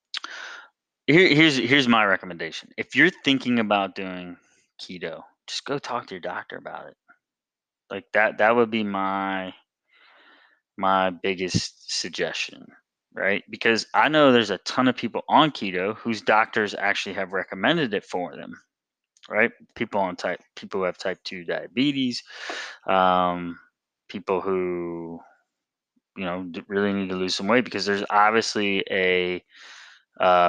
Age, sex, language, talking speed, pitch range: 20-39, male, English, 145 wpm, 90-115 Hz